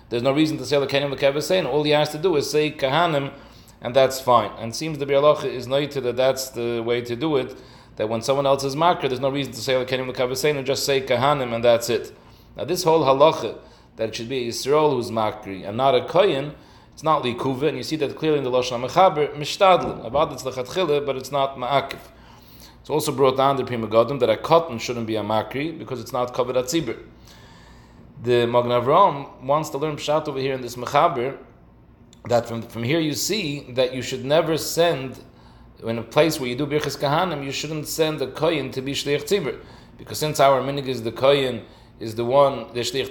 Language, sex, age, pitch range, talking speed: English, male, 30-49, 120-150 Hz, 205 wpm